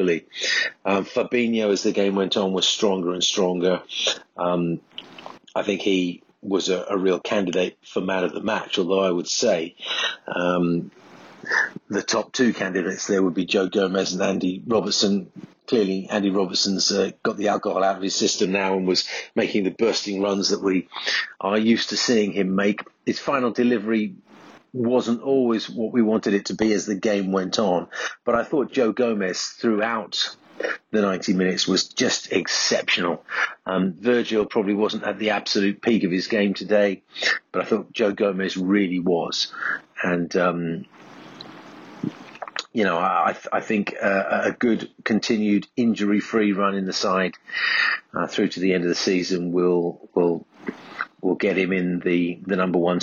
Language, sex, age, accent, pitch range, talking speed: English, male, 40-59, British, 90-110 Hz, 170 wpm